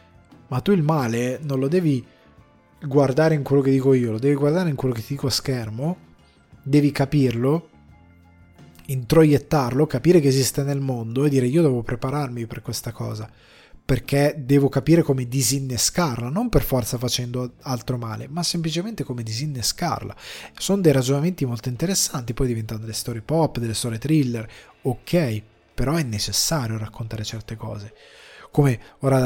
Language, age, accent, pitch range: Italian, 20-39, native, 120-145 Hz